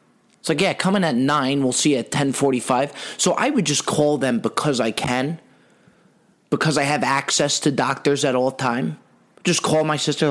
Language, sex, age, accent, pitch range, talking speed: English, male, 30-49, American, 140-210 Hz, 190 wpm